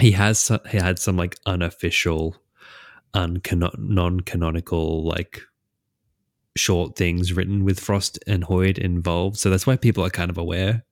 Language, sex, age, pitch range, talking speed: English, male, 20-39, 85-100 Hz, 155 wpm